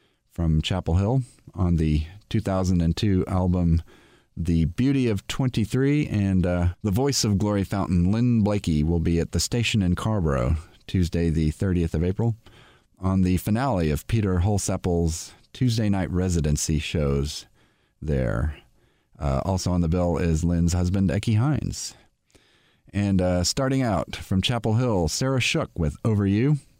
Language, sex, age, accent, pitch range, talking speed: English, male, 40-59, American, 90-125 Hz, 145 wpm